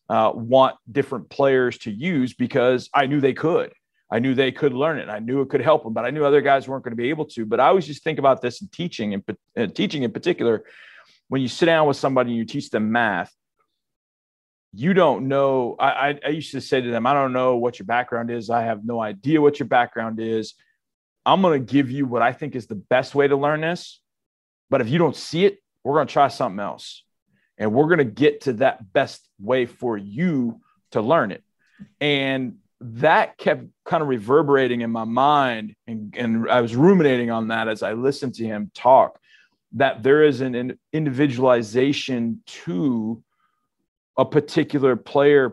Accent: American